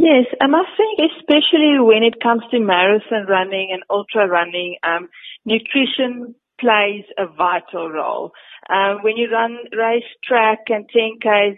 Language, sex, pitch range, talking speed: English, female, 185-235 Hz, 150 wpm